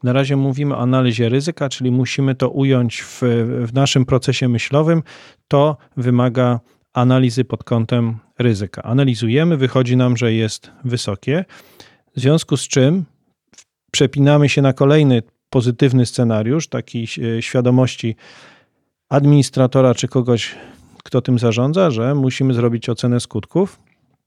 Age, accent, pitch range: 40-59, native, 120-140 Hz